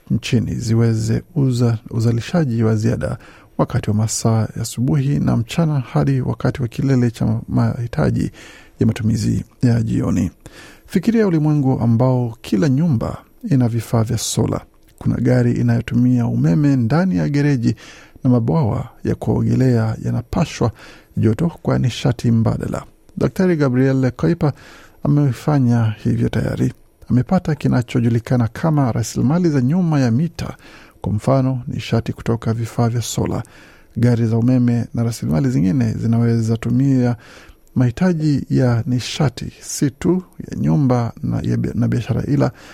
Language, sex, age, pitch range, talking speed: Swahili, male, 50-69, 115-140 Hz, 125 wpm